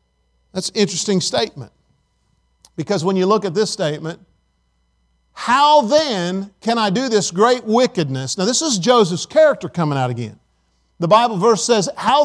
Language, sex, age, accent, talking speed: English, male, 50-69, American, 155 wpm